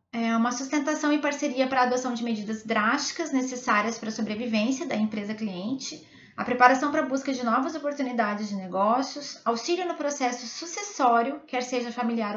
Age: 20-39